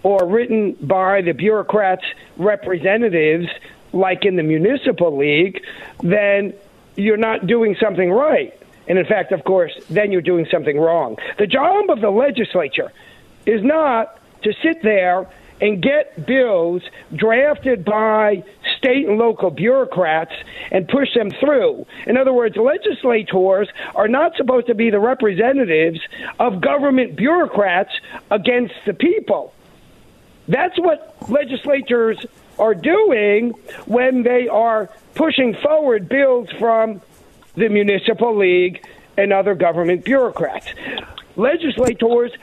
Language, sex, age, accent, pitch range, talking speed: English, male, 50-69, American, 190-255 Hz, 125 wpm